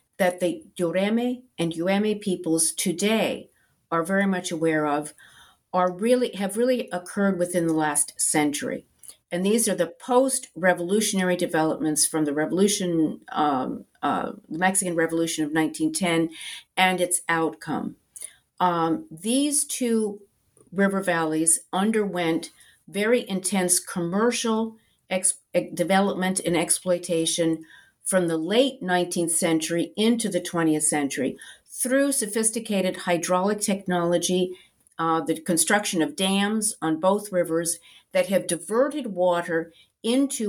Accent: American